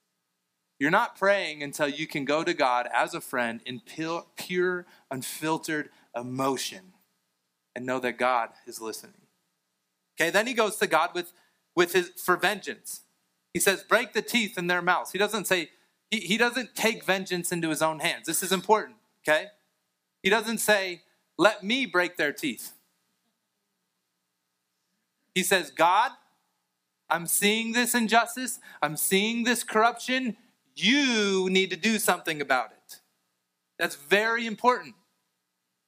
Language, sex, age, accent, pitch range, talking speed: English, male, 30-49, American, 125-210 Hz, 145 wpm